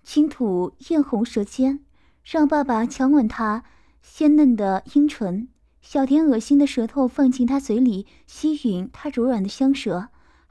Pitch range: 220-280 Hz